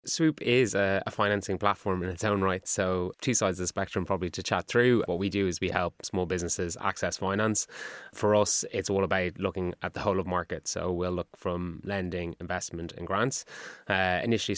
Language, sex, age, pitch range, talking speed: English, male, 20-39, 90-100 Hz, 205 wpm